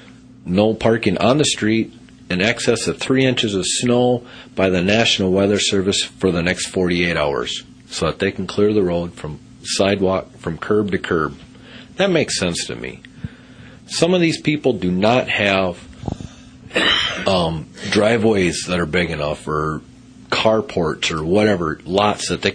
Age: 40-59